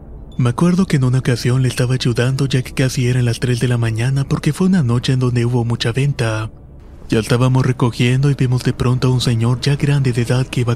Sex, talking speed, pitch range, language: male, 240 wpm, 115-135 Hz, Spanish